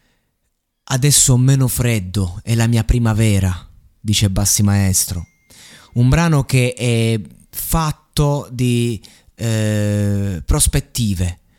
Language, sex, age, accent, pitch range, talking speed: Italian, male, 20-39, native, 110-140 Hz, 95 wpm